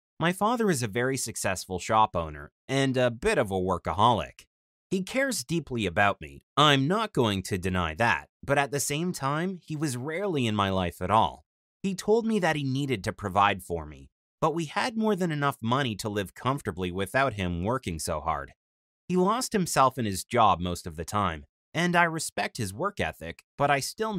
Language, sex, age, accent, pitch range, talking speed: English, male, 30-49, American, 95-155 Hz, 205 wpm